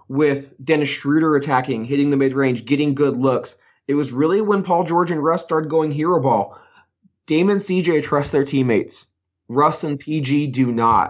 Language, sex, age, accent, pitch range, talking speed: English, male, 20-39, American, 130-160 Hz, 175 wpm